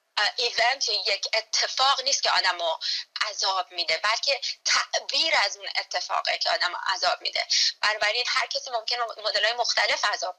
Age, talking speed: 20-39, 145 wpm